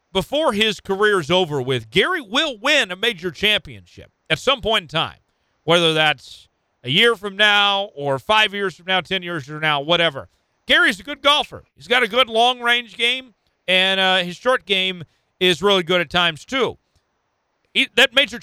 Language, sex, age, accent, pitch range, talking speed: English, male, 40-59, American, 140-205 Hz, 185 wpm